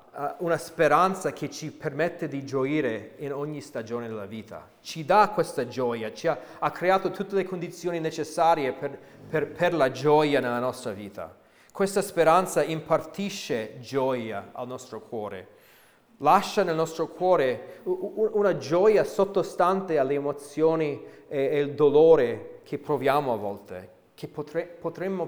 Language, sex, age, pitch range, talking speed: Italian, male, 30-49, 125-165 Hz, 135 wpm